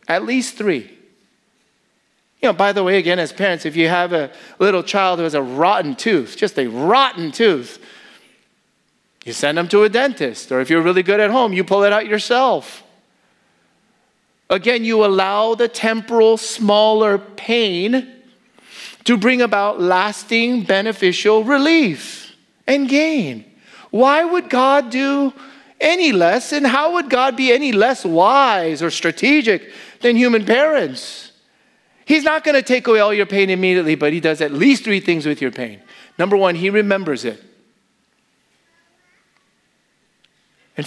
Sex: male